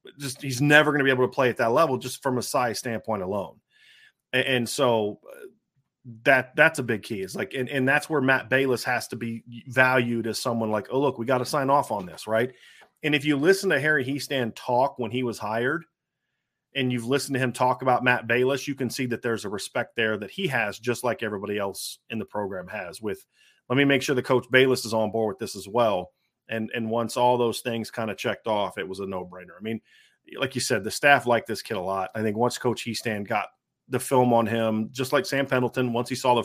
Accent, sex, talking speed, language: American, male, 245 wpm, English